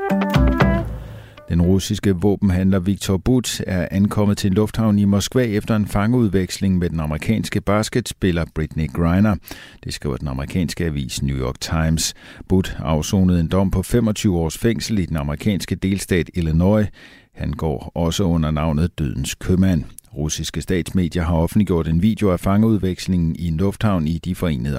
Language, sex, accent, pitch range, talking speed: Danish, male, native, 80-100 Hz, 155 wpm